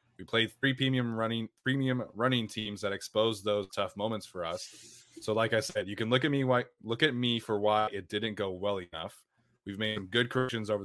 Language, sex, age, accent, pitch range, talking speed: English, male, 20-39, American, 105-125 Hz, 220 wpm